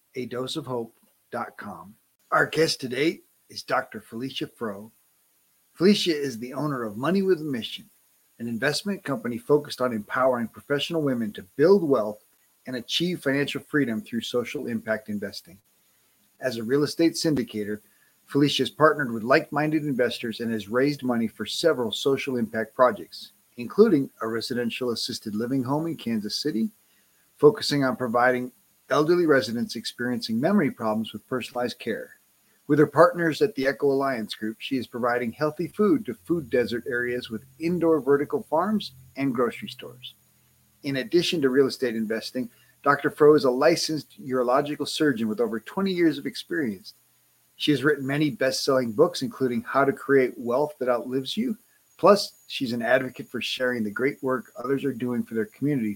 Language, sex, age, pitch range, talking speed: English, male, 40-59, 120-150 Hz, 160 wpm